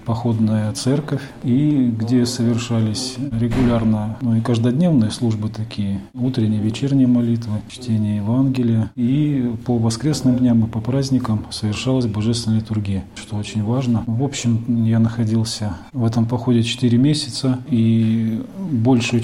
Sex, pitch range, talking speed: male, 110-125 Hz, 125 wpm